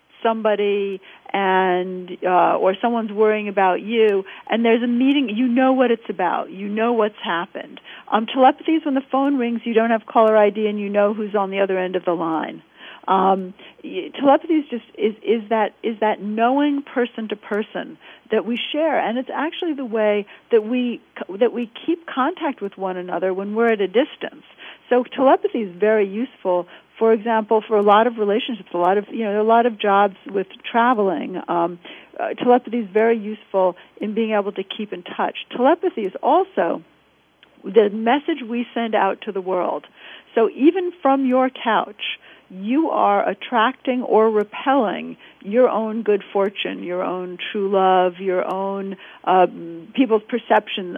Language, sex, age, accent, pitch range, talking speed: English, female, 50-69, American, 195-255 Hz, 175 wpm